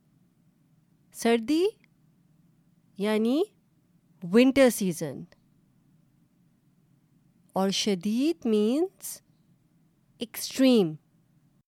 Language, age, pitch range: Urdu, 30-49, 170-230 Hz